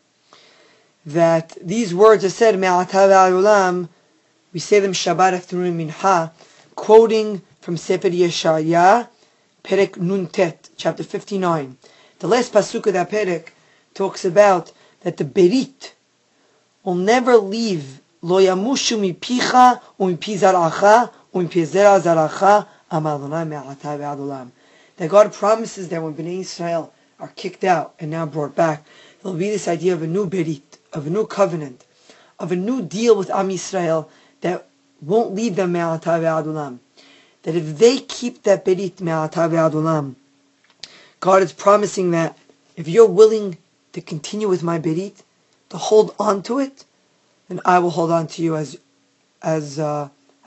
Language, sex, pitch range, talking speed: English, female, 160-205 Hz, 135 wpm